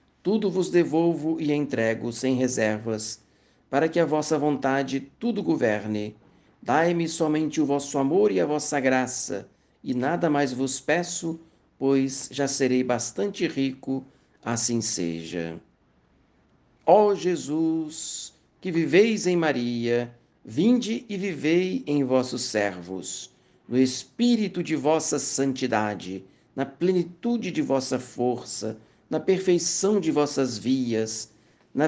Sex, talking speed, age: male, 120 wpm, 60-79